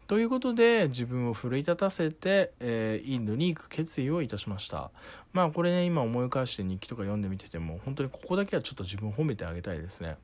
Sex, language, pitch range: male, Japanese, 100-150 Hz